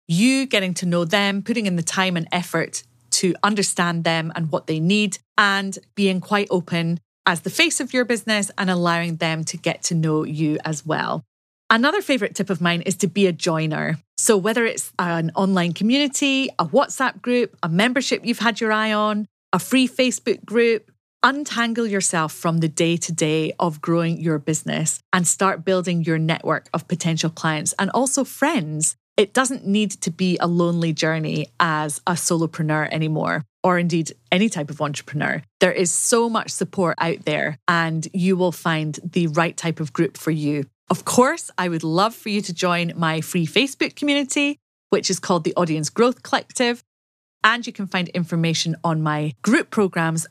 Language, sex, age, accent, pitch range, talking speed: English, female, 30-49, British, 160-205 Hz, 185 wpm